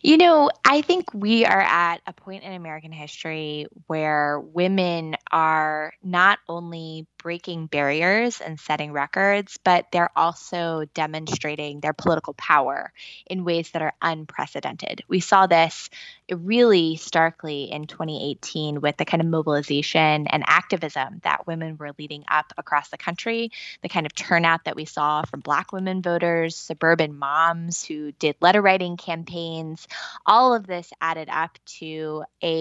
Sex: female